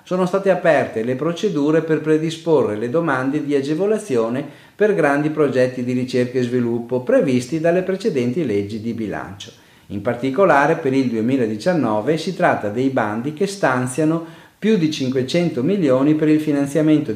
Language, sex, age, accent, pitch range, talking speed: Italian, male, 40-59, native, 115-165 Hz, 145 wpm